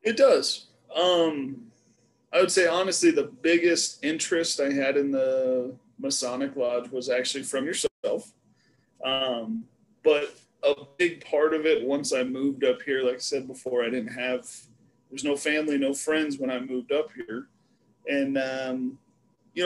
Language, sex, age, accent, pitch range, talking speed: English, male, 30-49, American, 130-160 Hz, 160 wpm